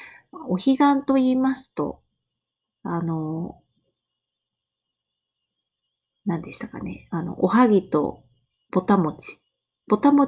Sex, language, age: female, Japanese, 30-49